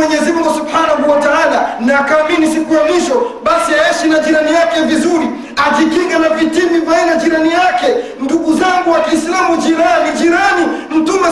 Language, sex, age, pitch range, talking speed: Swahili, male, 40-59, 290-360 Hz, 140 wpm